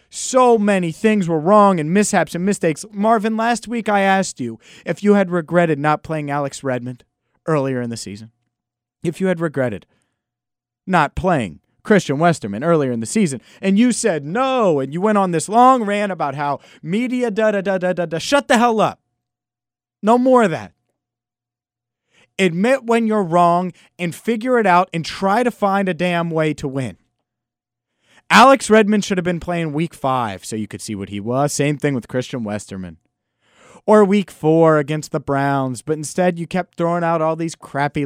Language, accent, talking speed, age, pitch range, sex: English, American, 180 wpm, 30-49, 135-210 Hz, male